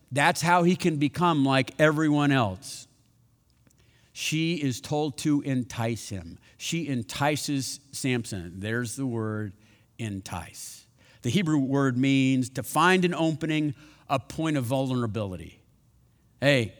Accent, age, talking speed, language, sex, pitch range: American, 50-69, 120 wpm, English, male, 115-140 Hz